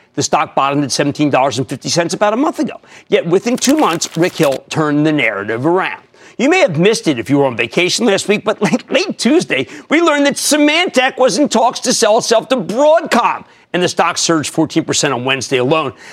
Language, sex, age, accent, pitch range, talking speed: English, male, 50-69, American, 155-245 Hz, 205 wpm